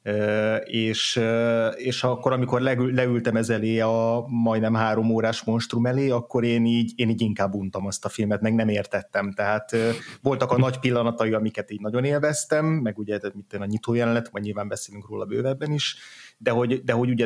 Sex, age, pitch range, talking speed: male, 30-49, 105-125 Hz, 190 wpm